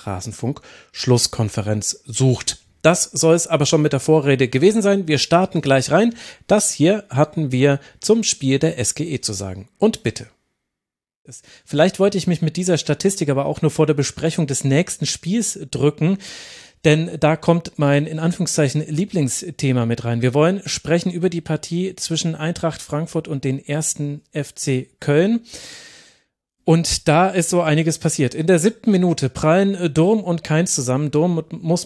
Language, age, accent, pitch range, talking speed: German, 40-59, German, 135-170 Hz, 160 wpm